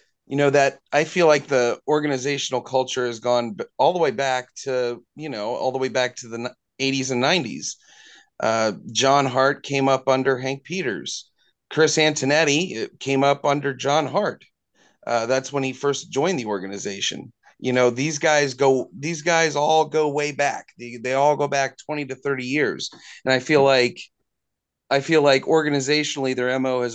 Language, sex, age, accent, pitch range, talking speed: English, male, 30-49, American, 120-145 Hz, 180 wpm